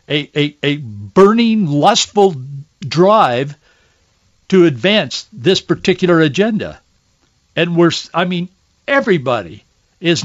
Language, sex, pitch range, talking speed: English, male, 155-190 Hz, 95 wpm